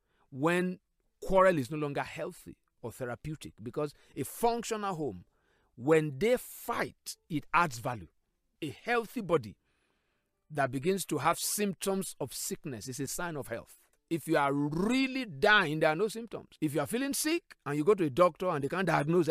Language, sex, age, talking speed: English, male, 50-69, 175 wpm